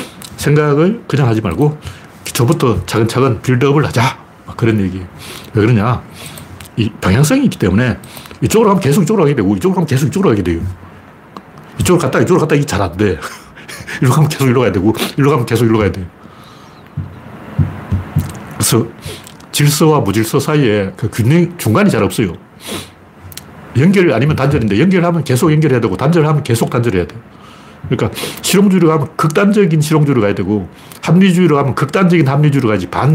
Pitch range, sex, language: 105-165 Hz, male, Korean